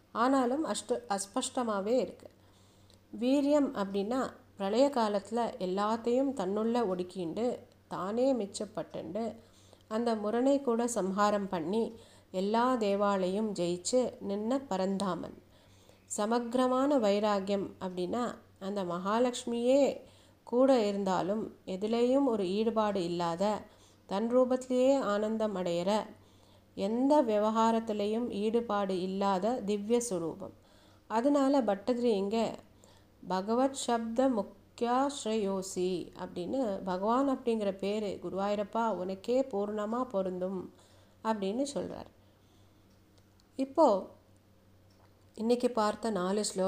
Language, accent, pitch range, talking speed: Tamil, native, 185-240 Hz, 65 wpm